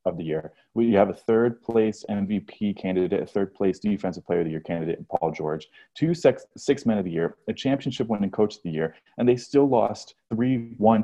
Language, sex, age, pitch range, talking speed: English, male, 30-49, 95-125 Hz, 225 wpm